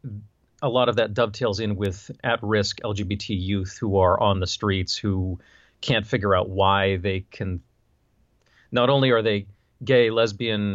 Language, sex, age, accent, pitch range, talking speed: English, male, 40-59, American, 95-115 Hz, 155 wpm